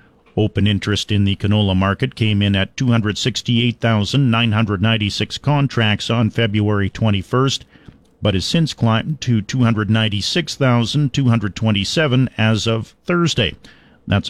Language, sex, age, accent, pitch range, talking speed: English, male, 50-69, American, 105-125 Hz, 100 wpm